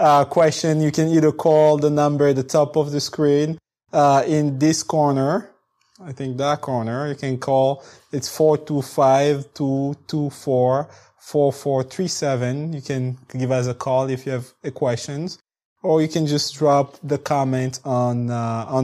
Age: 20-39